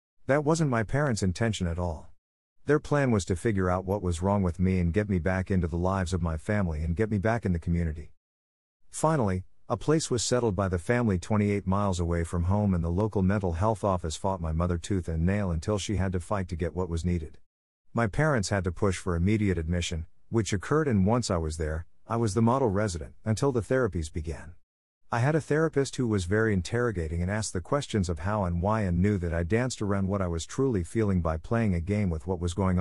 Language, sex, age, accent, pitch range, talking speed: English, male, 50-69, American, 85-110 Hz, 235 wpm